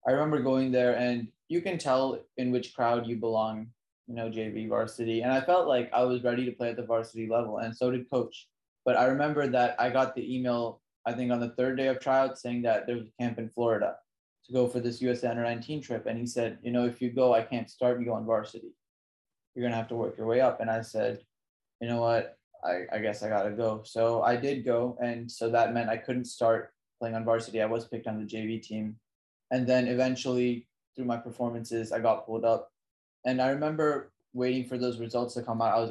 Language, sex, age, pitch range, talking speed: English, male, 20-39, 115-125 Hz, 240 wpm